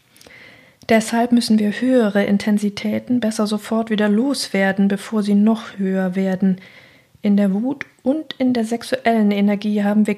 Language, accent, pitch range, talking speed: German, German, 195-225 Hz, 140 wpm